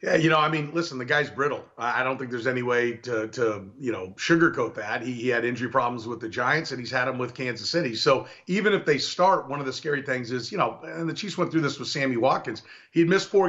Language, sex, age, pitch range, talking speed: English, male, 30-49, 130-160 Hz, 270 wpm